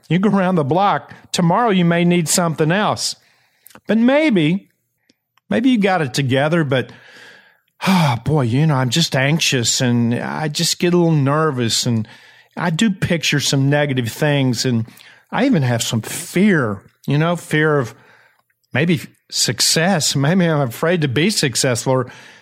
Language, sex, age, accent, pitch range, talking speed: English, male, 50-69, American, 125-175 Hz, 160 wpm